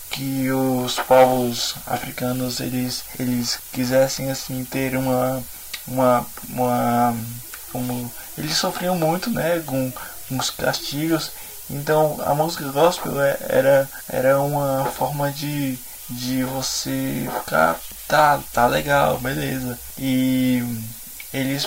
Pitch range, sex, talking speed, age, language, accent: 125-145 Hz, male, 110 wpm, 20-39, Portuguese, Brazilian